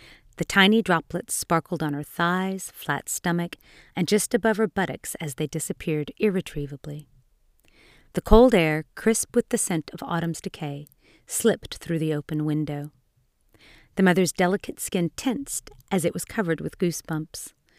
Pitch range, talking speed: 160-210 Hz, 150 wpm